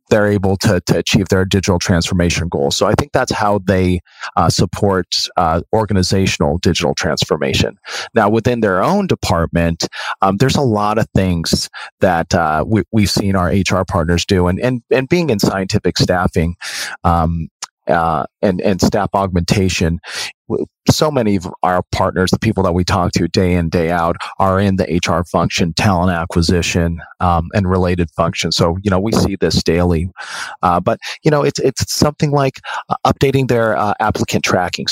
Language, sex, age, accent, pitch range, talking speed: English, male, 30-49, American, 90-105 Hz, 175 wpm